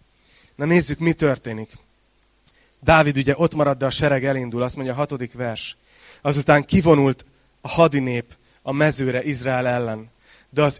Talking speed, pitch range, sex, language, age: 150 wpm, 115-155 Hz, male, Hungarian, 30-49